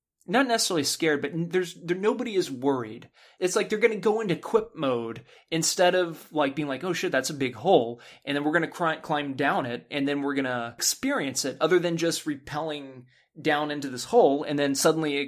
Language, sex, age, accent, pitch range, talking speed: English, male, 20-39, American, 135-180 Hz, 210 wpm